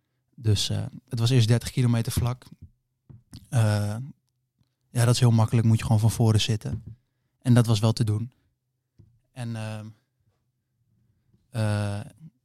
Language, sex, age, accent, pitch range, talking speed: Dutch, male, 20-39, Dutch, 110-130 Hz, 135 wpm